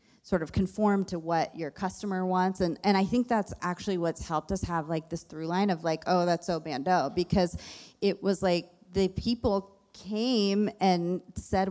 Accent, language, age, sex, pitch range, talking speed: American, English, 30-49, female, 160-195 Hz, 190 wpm